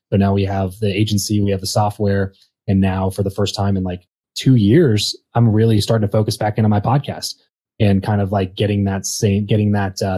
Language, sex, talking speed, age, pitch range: English, male, 230 wpm, 20-39, 90-105 Hz